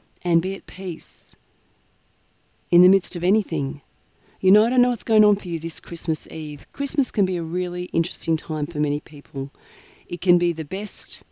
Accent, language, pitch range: Australian, English, 160-200 Hz